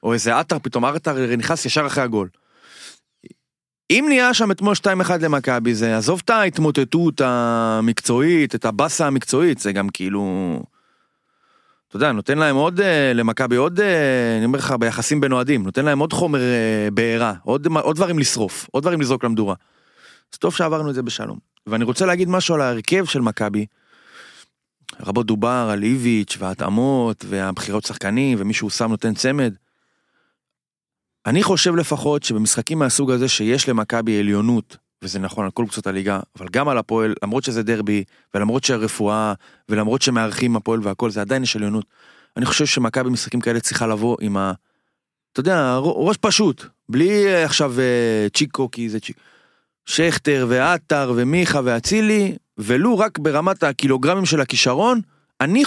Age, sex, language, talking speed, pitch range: 30-49, male, Hebrew, 150 wpm, 110-155 Hz